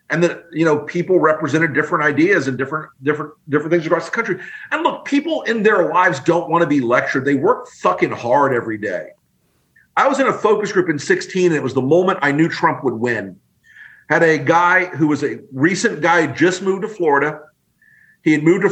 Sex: male